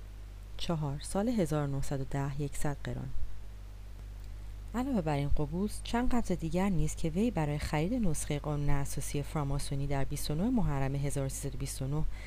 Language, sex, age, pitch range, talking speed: Persian, female, 30-49, 120-165 Hz, 120 wpm